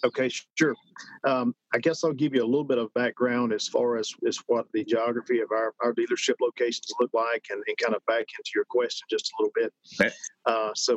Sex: male